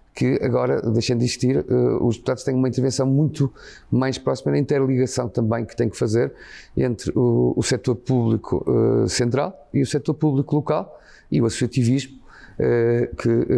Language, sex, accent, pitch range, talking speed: Portuguese, male, Portuguese, 110-125 Hz, 155 wpm